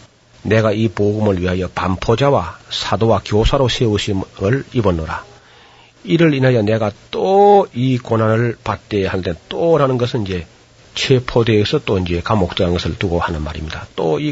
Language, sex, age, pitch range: Korean, male, 40-59, 95-125 Hz